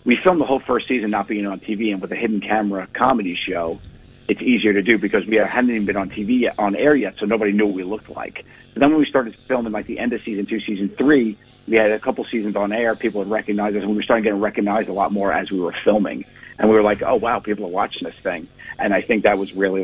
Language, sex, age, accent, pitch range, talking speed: English, male, 50-69, American, 100-115 Hz, 285 wpm